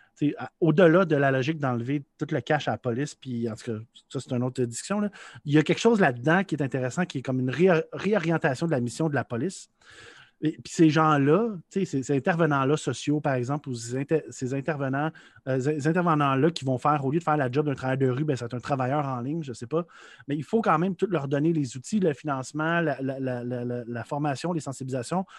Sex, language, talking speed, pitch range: male, French, 230 wpm, 130-160 Hz